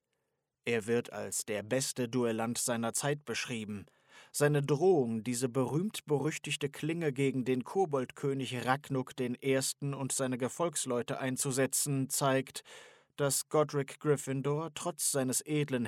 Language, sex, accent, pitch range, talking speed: German, male, German, 120-145 Hz, 115 wpm